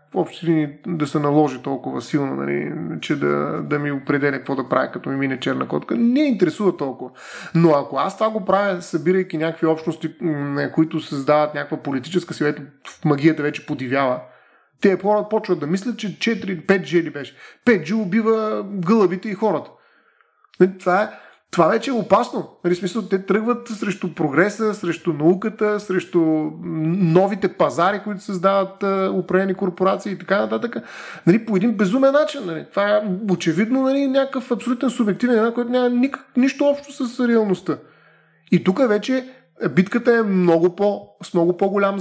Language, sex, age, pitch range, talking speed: Bulgarian, male, 30-49, 160-220 Hz, 155 wpm